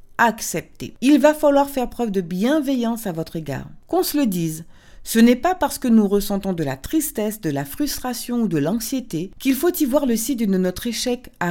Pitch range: 190-260 Hz